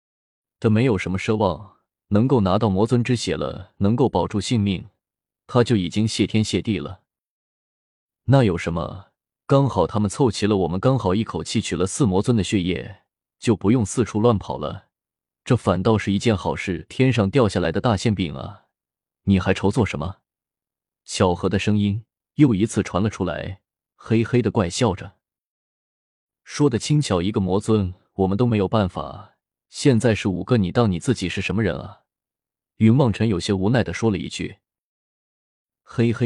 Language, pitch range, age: Chinese, 95-115 Hz, 20-39